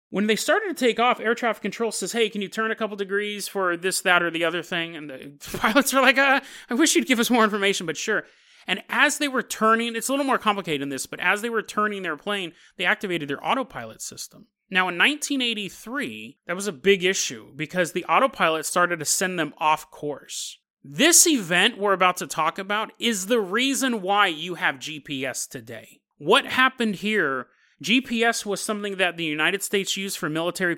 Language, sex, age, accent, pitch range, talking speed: English, male, 30-49, American, 160-220 Hz, 210 wpm